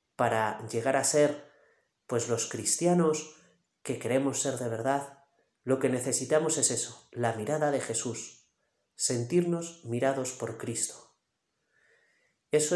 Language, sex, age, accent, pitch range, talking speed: Spanish, male, 30-49, Spanish, 120-150 Hz, 120 wpm